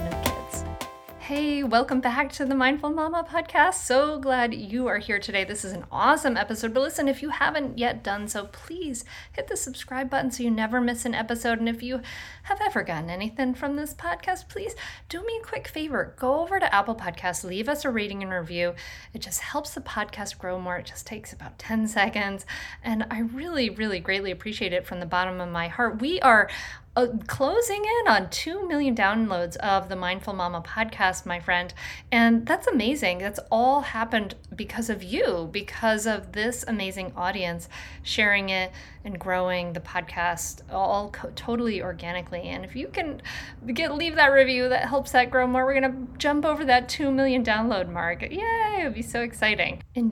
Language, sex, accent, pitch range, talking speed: English, female, American, 195-270 Hz, 195 wpm